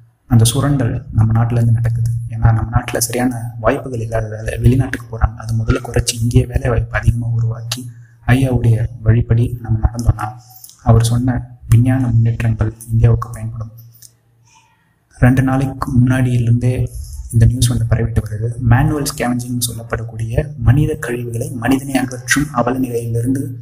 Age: 30-49